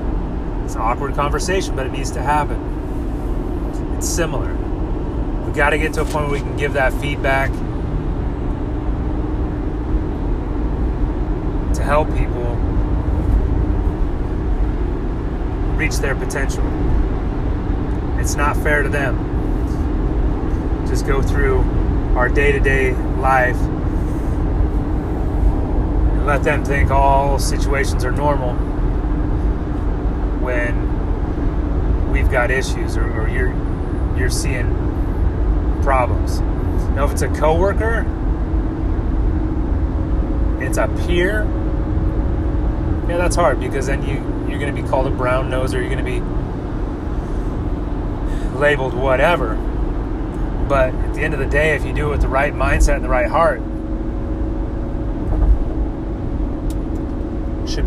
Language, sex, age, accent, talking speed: English, male, 30-49, American, 110 wpm